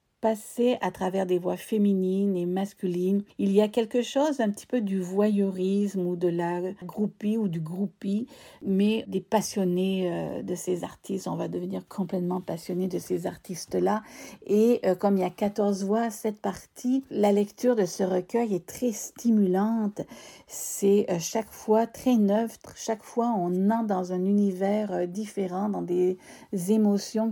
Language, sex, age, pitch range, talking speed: French, female, 50-69, 185-220 Hz, 160 wpm